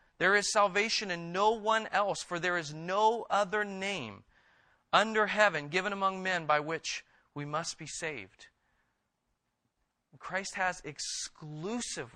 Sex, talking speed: male, 135 wpm